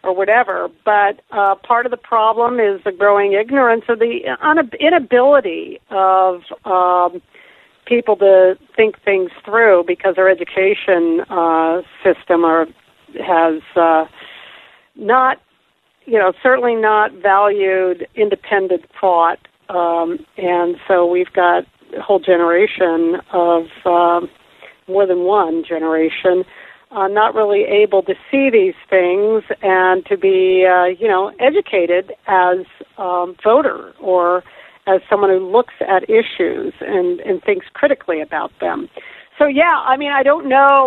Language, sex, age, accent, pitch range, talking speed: English, female, 50-69, American, 185-255 Hz, 130 wpm